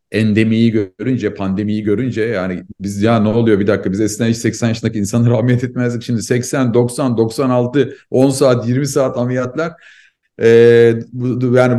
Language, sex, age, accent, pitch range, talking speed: Turkish, male, 50-69, native, 115-145 Hz, 145 wpm